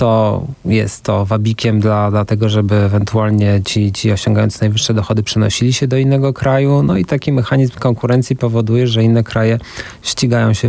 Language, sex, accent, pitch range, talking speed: Polish, male, native, 110-125 Hz, 170 wpm